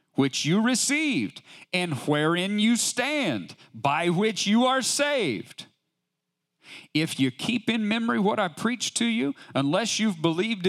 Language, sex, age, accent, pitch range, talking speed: English, male, 40-59, American, 145-225 Hz, 140 wpm